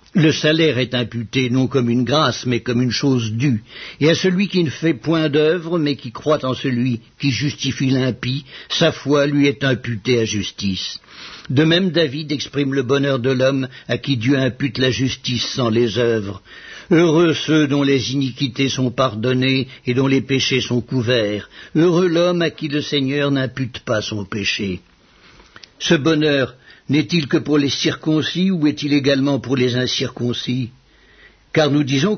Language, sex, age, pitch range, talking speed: English, male, 60-79, 125-155 Hz, 170 wpm